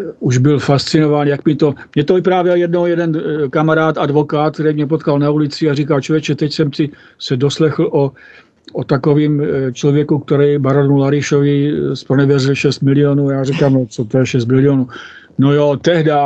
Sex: male